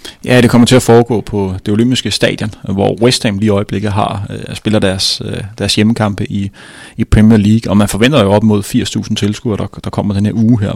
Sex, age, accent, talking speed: male, 30-49, native, 230 wpm